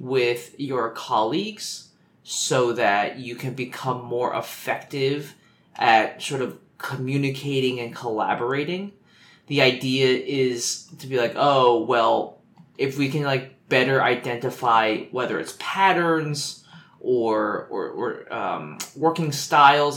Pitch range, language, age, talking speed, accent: 120-150 Hz, English, 20-39, 115 wpm, American